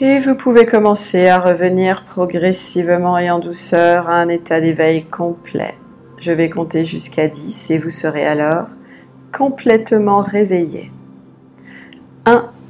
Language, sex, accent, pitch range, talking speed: French, female, French, 160-200 Hz, 130 wpm